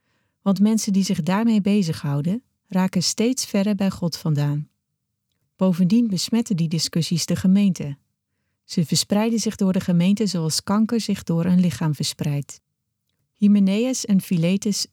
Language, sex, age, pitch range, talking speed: Dutch, female, 40-59, 160-205 Hz, 135 wpm